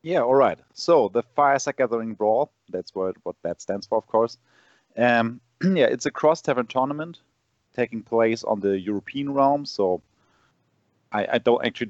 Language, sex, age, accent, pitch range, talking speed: English, male, 30-49, German, 95-120 Hz, 170 wpm